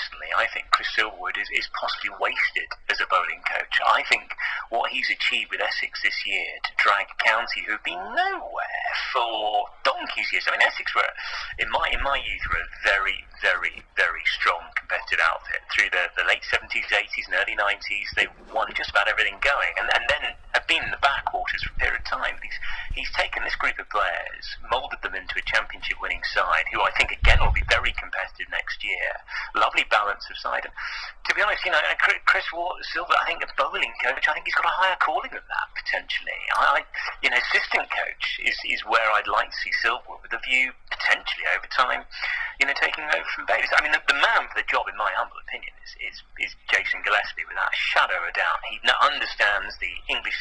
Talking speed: 215 wpm